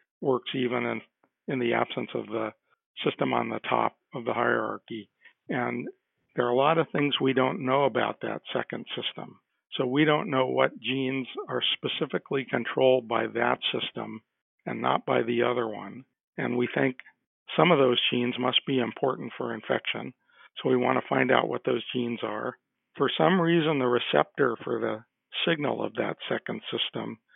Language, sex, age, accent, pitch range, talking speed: English, male, 50-69, American, 115-135 Hz, 180 wpm